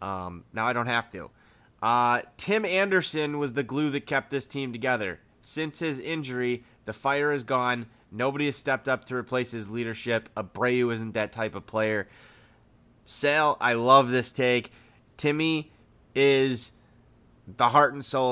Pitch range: 115-130 Hz